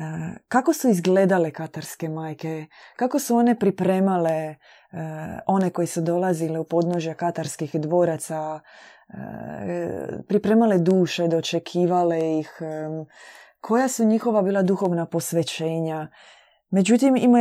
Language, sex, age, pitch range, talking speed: Croatian, female, 20-39, 165-215 Hz, 110 wpm